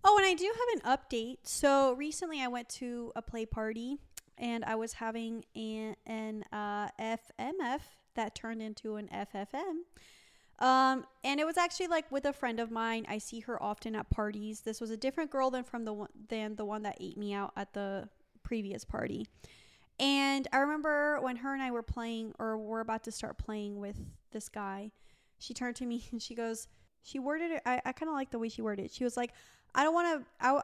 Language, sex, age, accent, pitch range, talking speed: English, female, 20-39, American, 215-265 Hz, 210 wpm